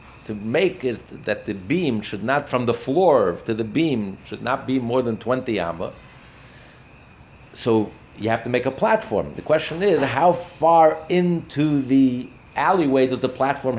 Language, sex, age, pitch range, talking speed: English, male, 50-69, 110-140 Hz, 170 wpm